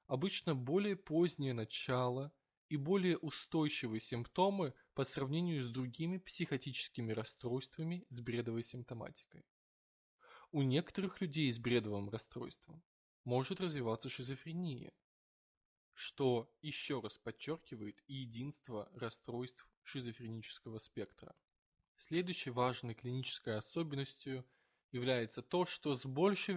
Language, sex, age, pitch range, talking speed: Russian, male, 20-39, 120-160 Hz, 100 wpm